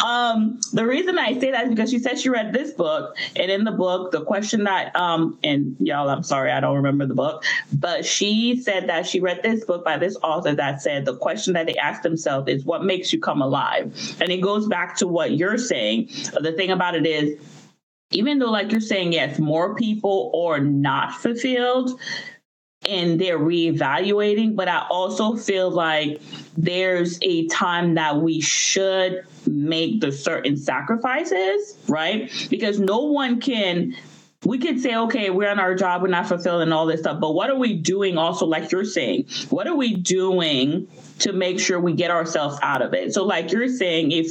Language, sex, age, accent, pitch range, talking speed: English, female, 30-49, American, 170-220 Hz, 195 wpm